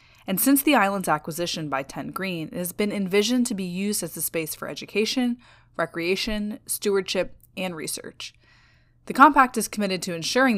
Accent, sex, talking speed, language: American, female, 170 wpm, English